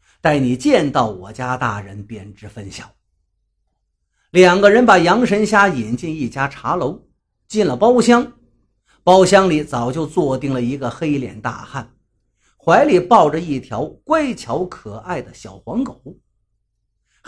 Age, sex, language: 50-69, male, Chinese